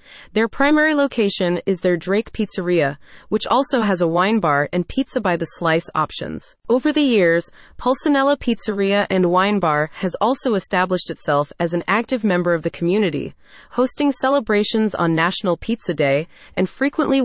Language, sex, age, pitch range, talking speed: English, female, 30-49, 170-235 Hz, 160 wpm